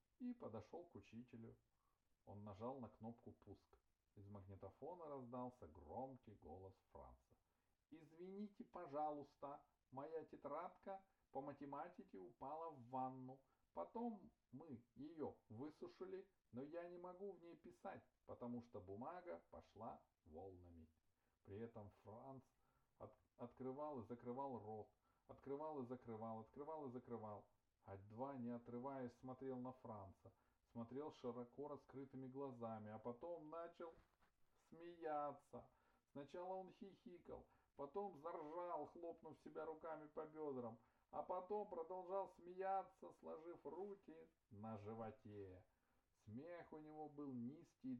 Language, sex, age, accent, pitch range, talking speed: Russian, male, 40-59, native, 115-165 Hz, 115 wpm